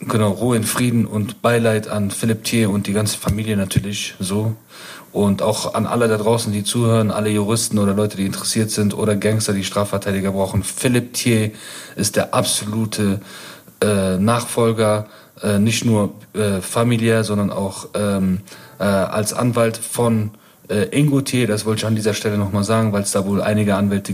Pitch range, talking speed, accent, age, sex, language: 100-110 Hz, 175 wpm, German, 40-59, male, German